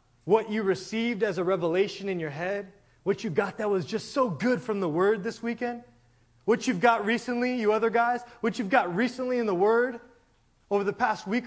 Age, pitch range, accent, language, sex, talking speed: 20-39, 210-275 Hz, American, English, male, 210 wpm